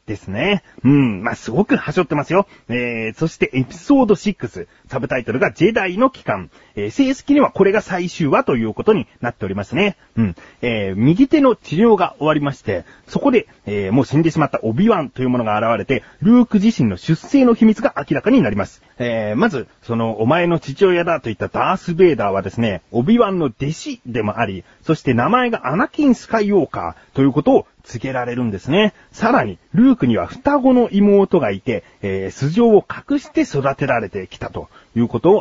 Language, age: Japanese, 30-49